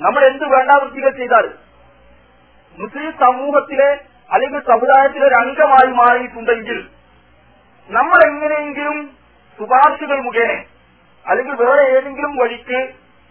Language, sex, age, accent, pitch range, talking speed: Malayalam, male, 40-59, native, 190-265 Hz, 85 wpm